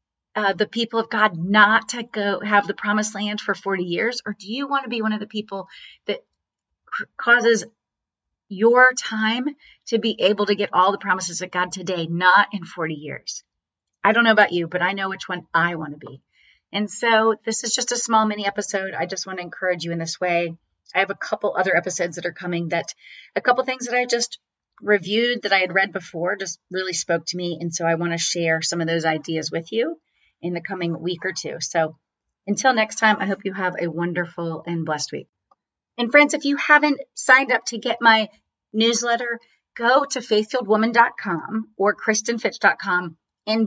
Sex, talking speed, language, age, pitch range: female, 210 wpm, English, 30-49, 175-225 Hz